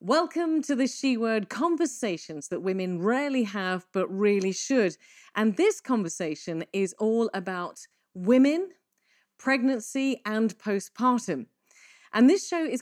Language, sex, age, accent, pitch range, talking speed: English, female, 40-59, British, 190-265 Hz, 125 wpm